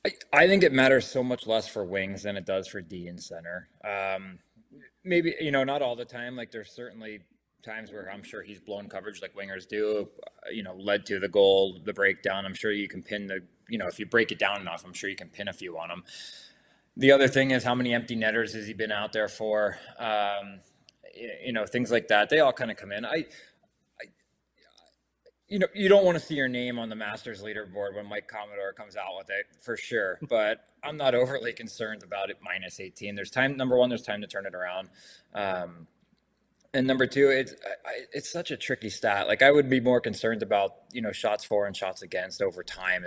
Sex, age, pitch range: male, 20-39, 100-135 Hz